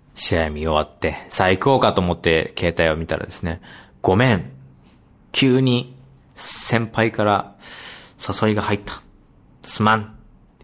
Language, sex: Japanese, male